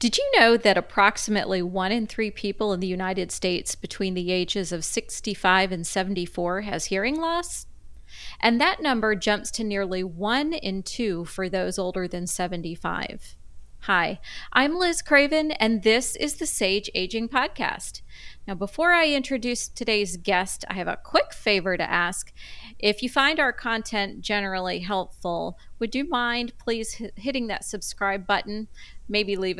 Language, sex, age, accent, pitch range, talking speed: English, female, 30-49, American, 185-240 Hz, 160 wpm